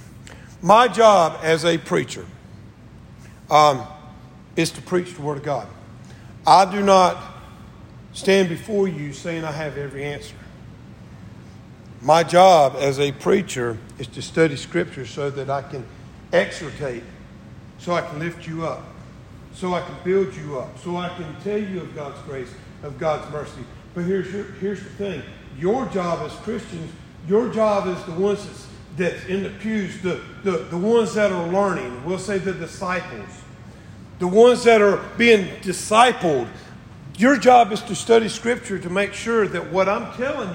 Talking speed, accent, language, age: 165 wpm, American, English, 50-69